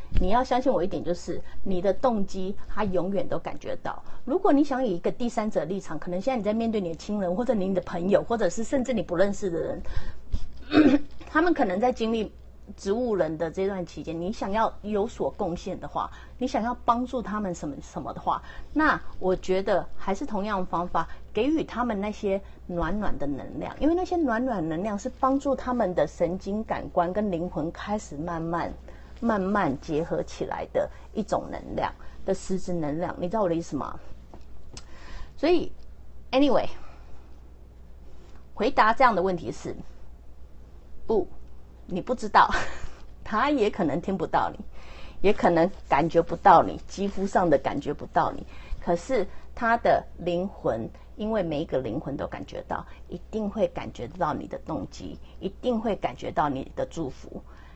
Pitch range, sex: 170-230 Hz, female